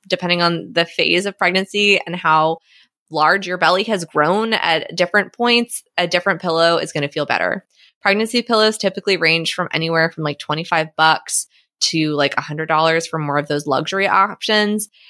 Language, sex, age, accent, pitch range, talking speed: English, female, 20-39, American, 160-200 Hz, 180 wpm